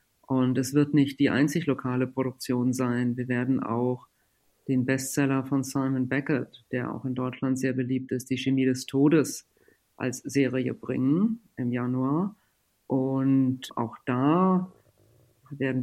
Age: 50-69